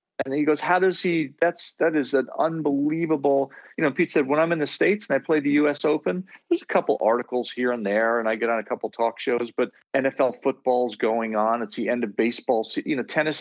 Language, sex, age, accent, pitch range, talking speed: English, male, 40-59, American, 120-175 Hz, 245 wpm